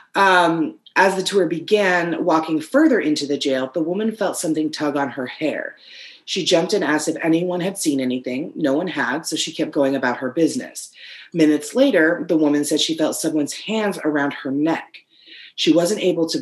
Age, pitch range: 30-49, 145-185 Hz